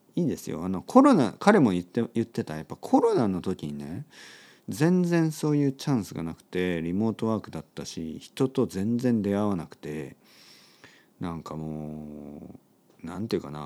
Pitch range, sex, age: 80-125 Hz, male, 40-59